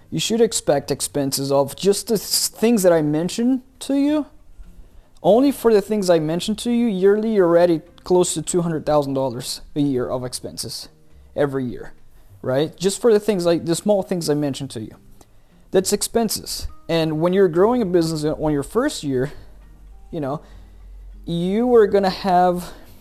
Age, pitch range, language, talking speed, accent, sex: 30-49, 125-180 Hz, English, 165 wpm, American, male